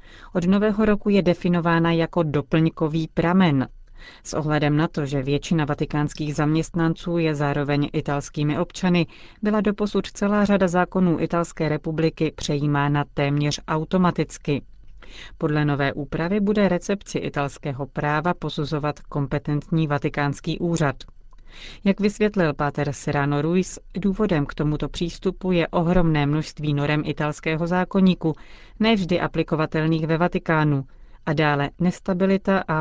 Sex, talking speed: female, 120 wpm